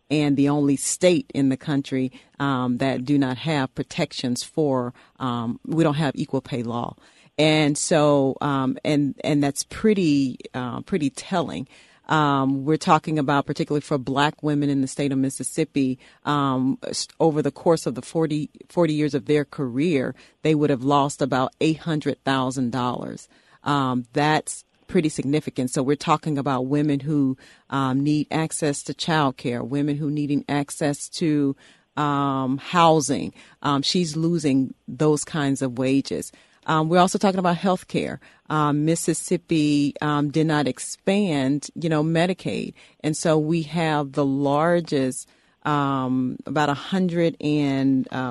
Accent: American